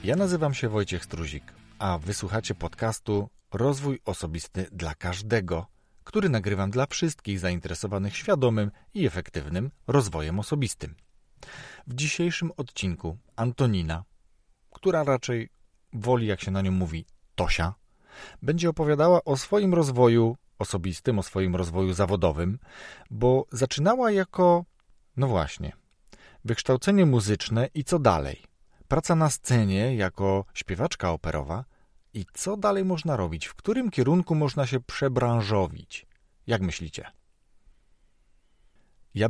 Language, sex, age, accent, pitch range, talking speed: Polish, male, 40-59, native, 90-135 Hz, 115 wpm